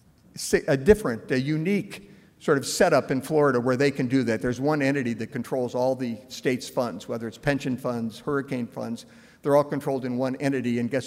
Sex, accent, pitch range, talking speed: male, American, 130-155 Hz, 200 wpm